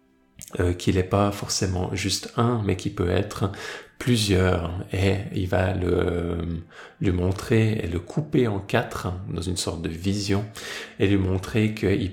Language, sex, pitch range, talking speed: French, male, 90-110 Hz, 175 wpm